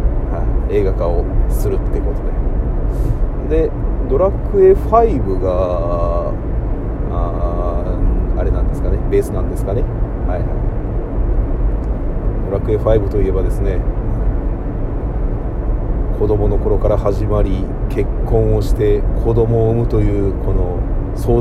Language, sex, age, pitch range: Japanese, male, 40-59, 95-115 Hz